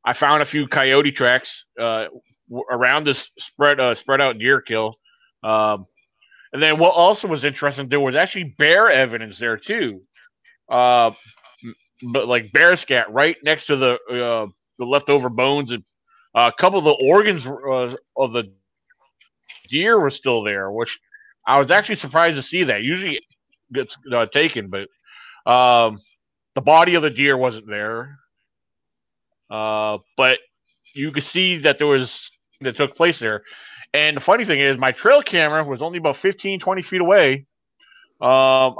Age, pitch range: 30-49, 125-170 Hz